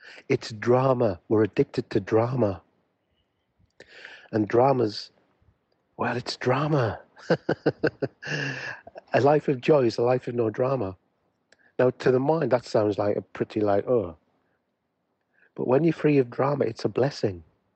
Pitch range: 105-150 Hz